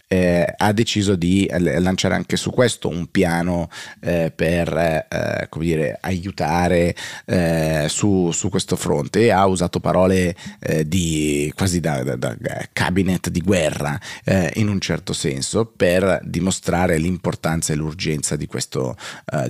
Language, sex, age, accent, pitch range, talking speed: Italian, male, 30-49, native, 80-100 Hz, 150 wpm